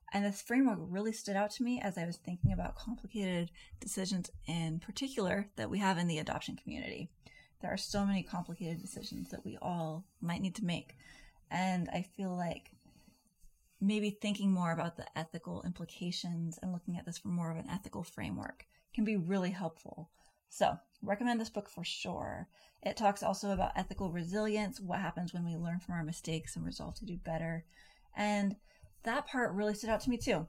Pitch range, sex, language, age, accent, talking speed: 165-200 Hz, female, English, 30-49, American, 190 wpm